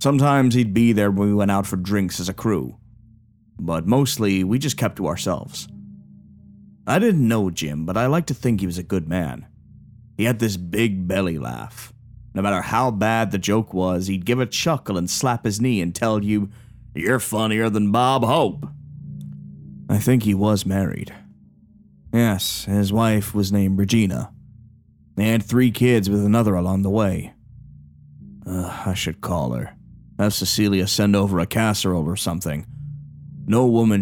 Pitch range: 90-115 Hz